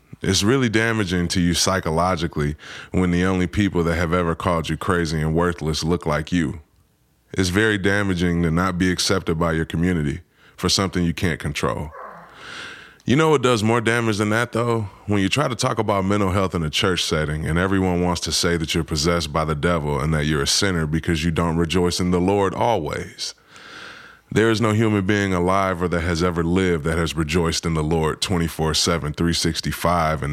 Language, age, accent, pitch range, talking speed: English, 20-39, American, 80-95 Hz, 200 wpm